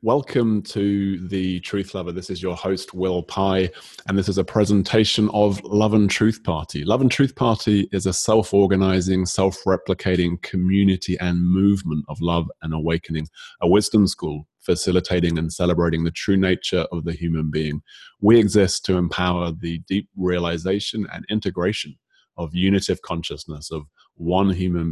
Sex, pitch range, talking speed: male, 85-95 Hz, 155 wpm